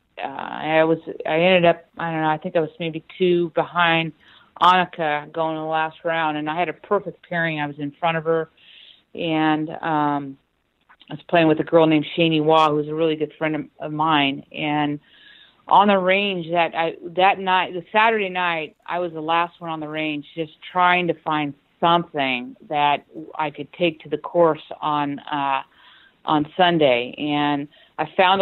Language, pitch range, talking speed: English, 150-180 Hz, 190 wpm